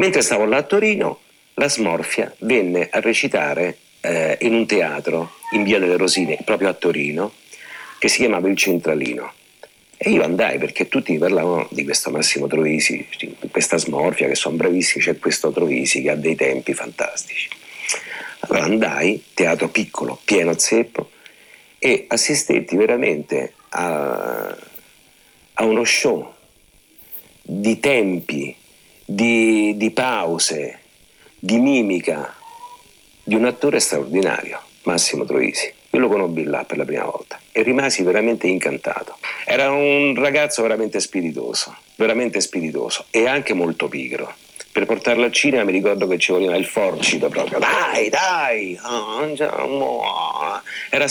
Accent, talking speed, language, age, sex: native, 135 wpm, Italian, 50-69, male